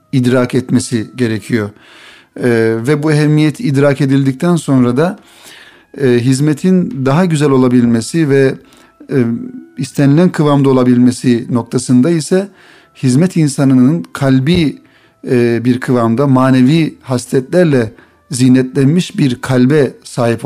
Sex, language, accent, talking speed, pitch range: male, Turkish, native, 105 wpm, 120-145 Hz